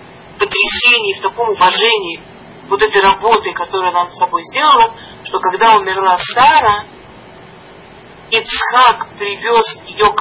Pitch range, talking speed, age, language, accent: 190-260 Hz, 120 wpm, 40-59, Russian, native